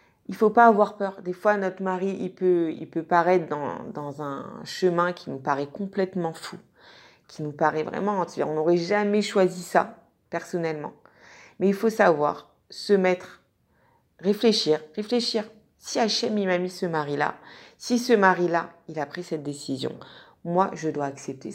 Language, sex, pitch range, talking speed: French, female, 155-190 Hz, 165 wpm